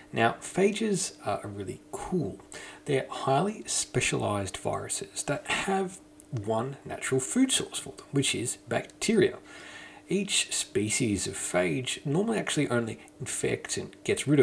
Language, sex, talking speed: English, male, 130 wpm